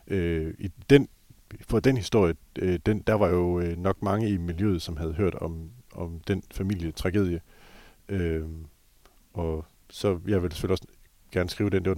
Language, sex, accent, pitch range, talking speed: Danish, male, native, 85-105 Hz, 165 wpm